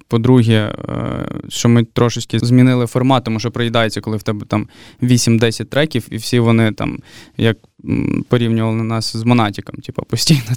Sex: male